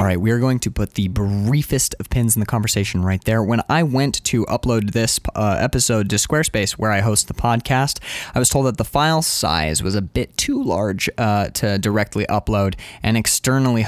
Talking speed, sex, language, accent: 210 wpm, male, English, American